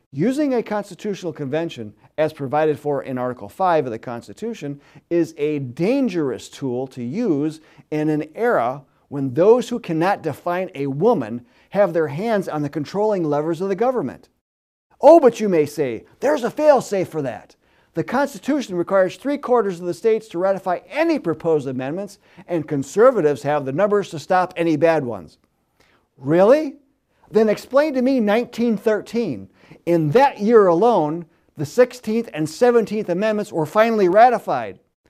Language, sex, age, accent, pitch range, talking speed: English, male, 50-69, American, 145-220 Hz, 150 wpm